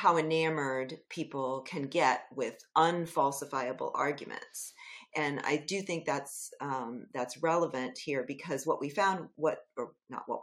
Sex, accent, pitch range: female, American, 140-175 Hz